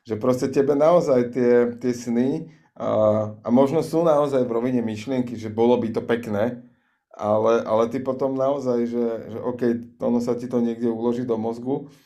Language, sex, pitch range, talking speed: Slovak, male, 115-125 Hz, 180 wpm